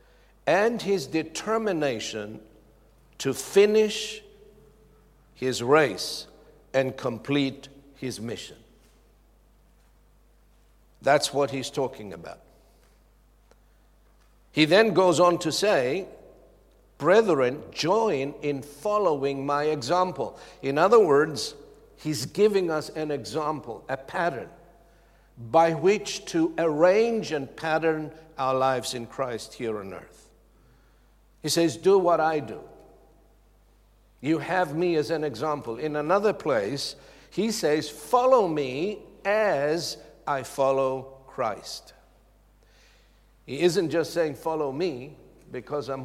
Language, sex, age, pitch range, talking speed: English, male, 60-79, 135-180 Hz, 105 wpm